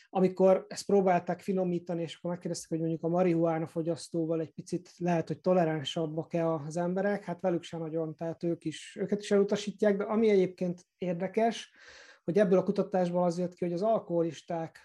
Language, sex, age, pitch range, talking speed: Hungarian, male, 30-49, 160-180 Hz, 175 wpm